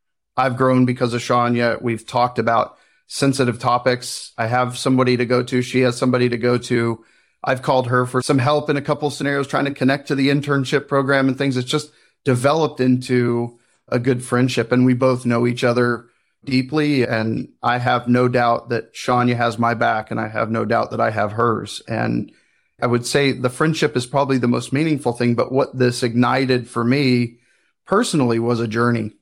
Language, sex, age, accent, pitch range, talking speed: English, male, 40-59, American, 120-130 Hz, 195 wpm